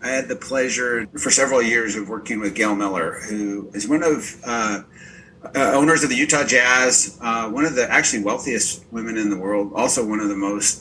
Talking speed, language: 215 wpm, English